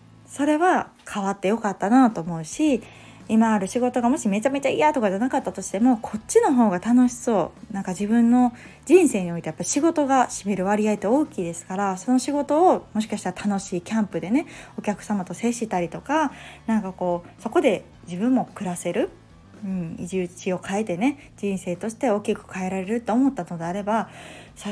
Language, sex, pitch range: Japanese, female, 185-255 Hz